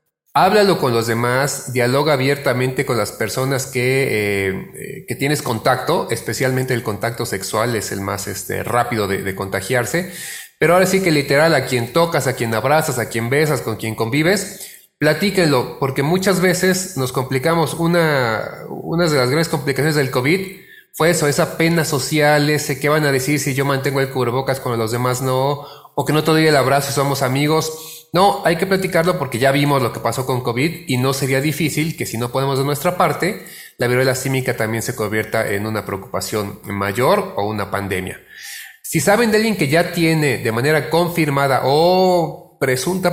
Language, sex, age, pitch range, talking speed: Spanish, male, 30-49, 120-160 Hz, 185 wpm